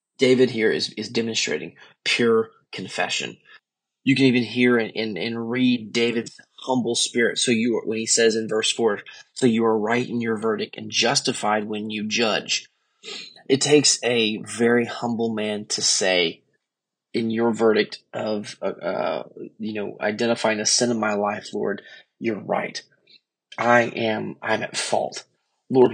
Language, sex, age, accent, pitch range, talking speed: English, male, 20-39, American, 110-120 Hz, 160 wpm